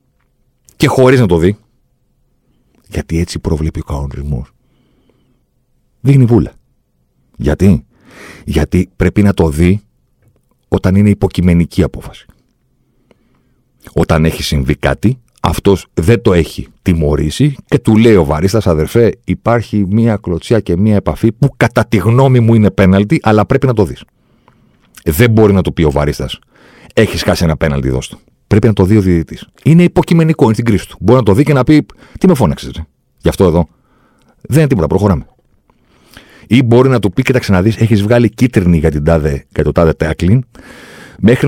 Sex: male